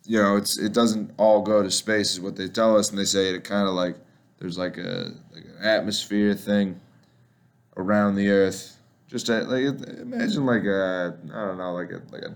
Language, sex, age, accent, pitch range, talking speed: English, male, 20-39, American, 100-120 Hz, 215 wpm